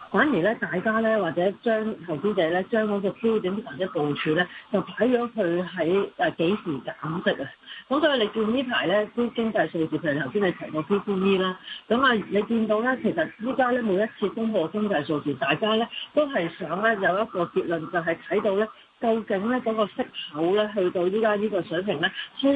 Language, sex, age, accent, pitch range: Chinese, female, 40-59, native, 170-225 Hz